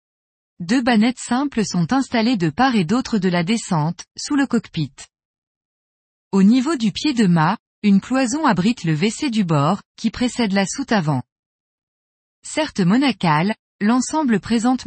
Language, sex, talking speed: French, female, 150 wpm